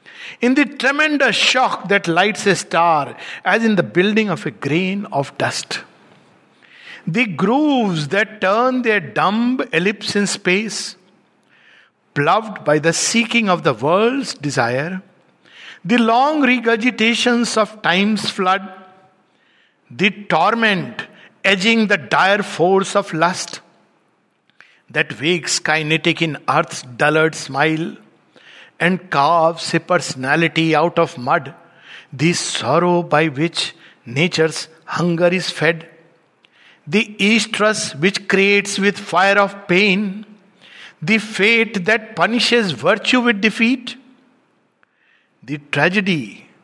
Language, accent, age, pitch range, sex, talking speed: Hindi, native, 60-79, 165-220 Hz, male, 110 wpm